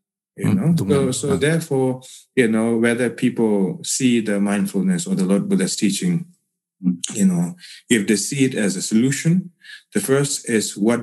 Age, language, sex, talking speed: 30-49, English, male, 165 wpm